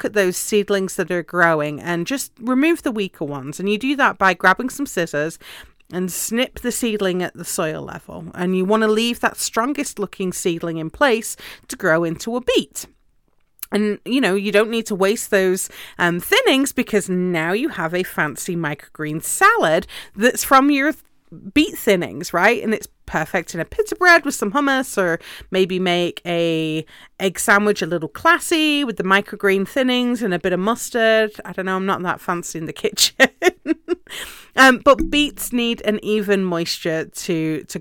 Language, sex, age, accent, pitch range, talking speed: English, female, 30-49, British, 170-230 Hz, 185 wpm